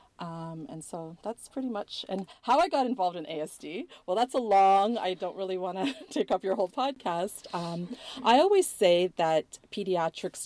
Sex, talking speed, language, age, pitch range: female, 190 wpm, English, 30-49, 155-185 Hz